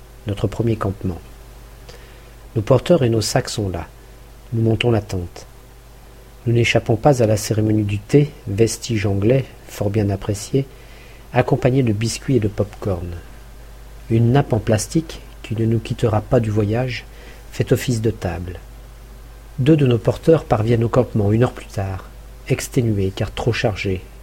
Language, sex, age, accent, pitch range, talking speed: French, male, 50-69, French, 105-125 Hz, 155 wpm